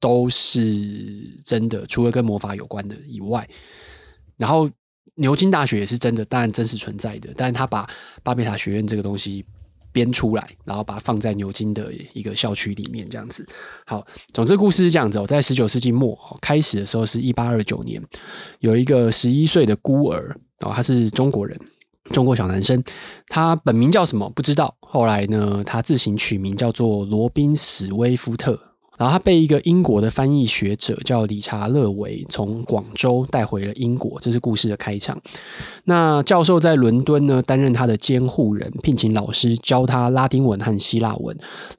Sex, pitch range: male, 105-130 Hz